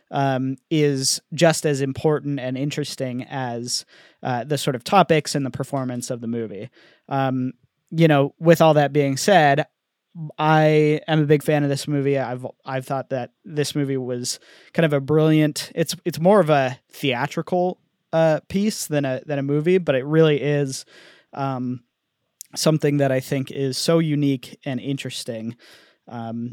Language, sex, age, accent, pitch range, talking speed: English, male, 20-39, American, 130-155 Hz, 165 wpm